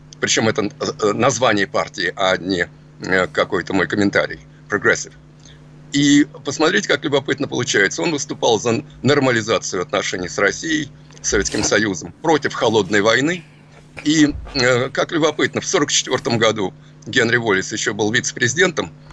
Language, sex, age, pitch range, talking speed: Russian, male, 50-69, 115-150 Hz, 120 wpm